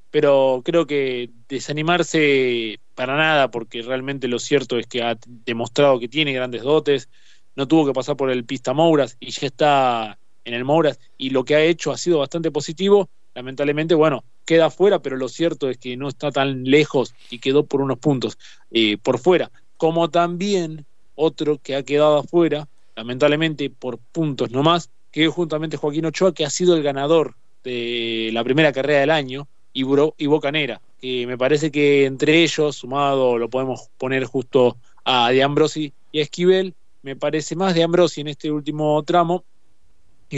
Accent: Argentinian